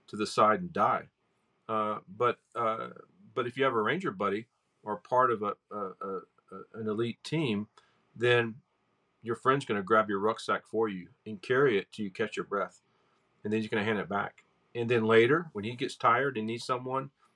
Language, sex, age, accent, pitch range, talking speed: English, male, 40-59, American, 110-145 Hz, 210 wpm